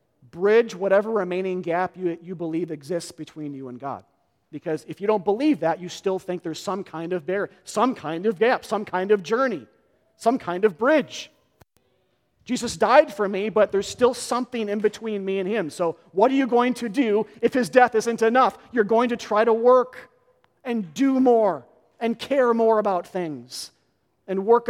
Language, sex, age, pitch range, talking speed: English, male, 40-59, 170-220 Hz, 190 wpm